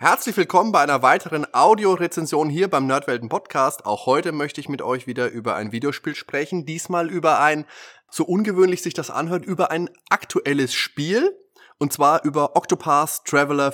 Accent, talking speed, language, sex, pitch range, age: German, 165 wpm, German, male, 100-145 Hz, 30-49